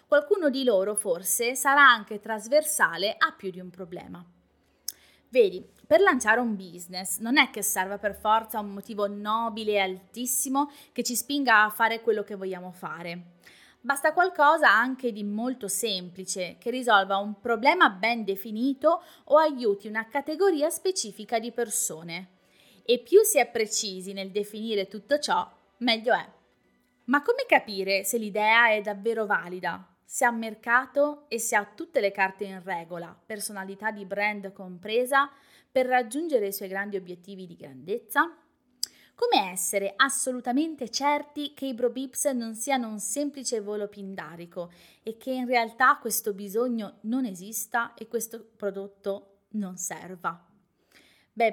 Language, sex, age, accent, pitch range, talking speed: Italian, female, 20-39, native, 195-265 Hz, 145 wpm